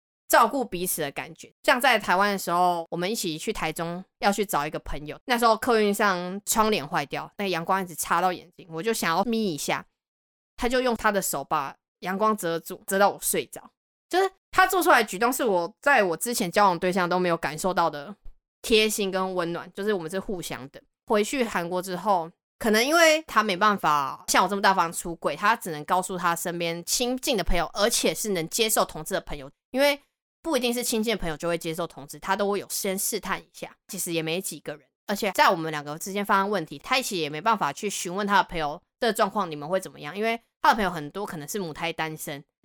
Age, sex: 20-39, female